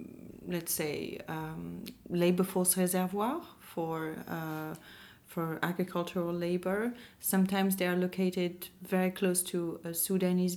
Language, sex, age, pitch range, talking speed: English, female, 30-49, 160-190 Hz, 115 wpm